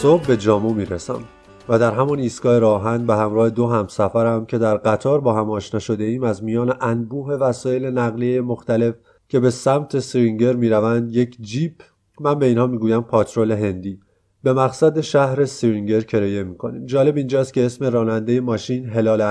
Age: 30-49